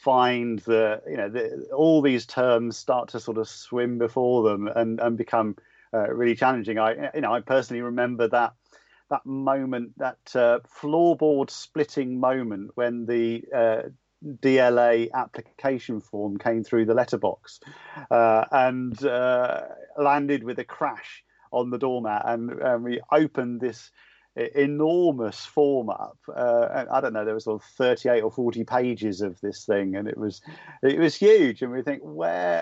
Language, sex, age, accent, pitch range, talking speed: English, male, 40-59, British, 115-135 Hz, 160 wpm